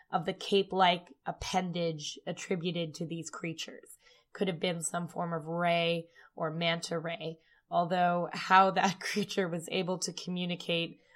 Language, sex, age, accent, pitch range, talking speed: English, female, 10-29, American, 170-200 Hz, 140 wpm